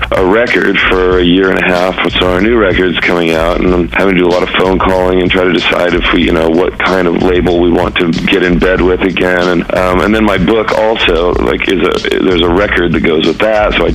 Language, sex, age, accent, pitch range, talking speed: English, male, 40-59, American, 85-90 Hz, 275 wpm